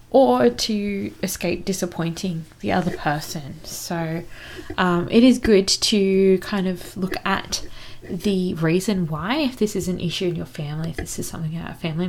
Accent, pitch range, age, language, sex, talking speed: Australian, 165-195 Hz, 20-39, English, female, 175 wpm